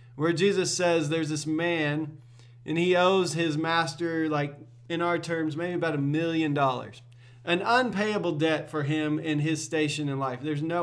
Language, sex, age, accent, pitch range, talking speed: English, male, 30-49, American, 125-175 Hz, 175 wpm